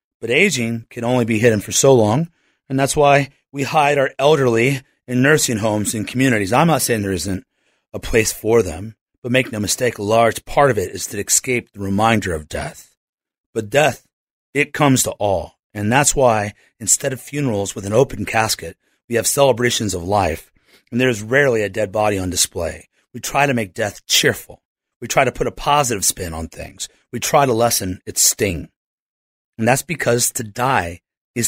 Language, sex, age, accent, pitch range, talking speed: English, male, 30-49, American, 105-140 Hz, 195 wpm